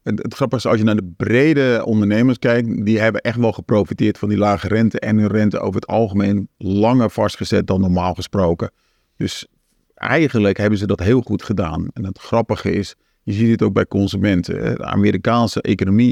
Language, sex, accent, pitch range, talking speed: Dutch, male, Dutch, 100-120 Hz, 190 wpm